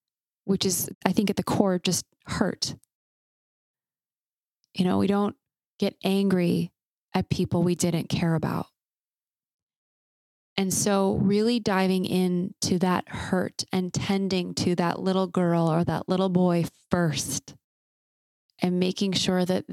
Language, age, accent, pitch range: English, 20-39, American, 170-190 Hz